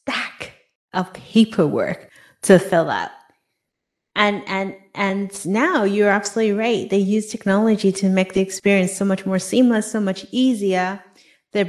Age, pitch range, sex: 30-49, 180-220 Hz, female